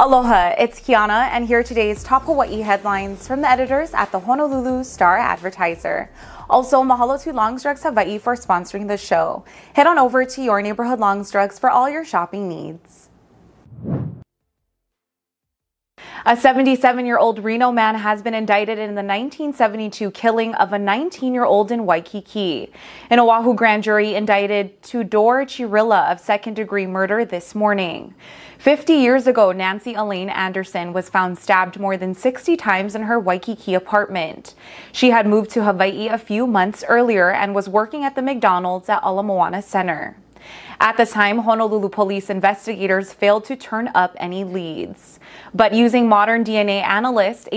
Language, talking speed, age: English, 155 wpm, 20-39